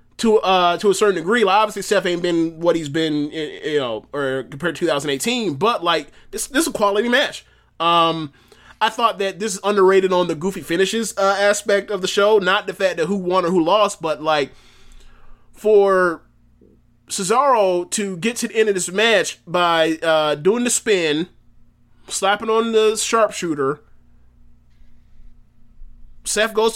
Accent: American